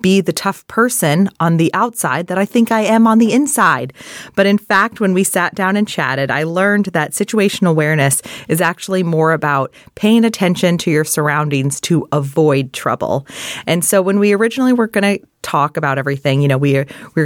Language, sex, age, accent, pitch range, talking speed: English, female, 30-49, American, 155-205 Hz, 200 wpm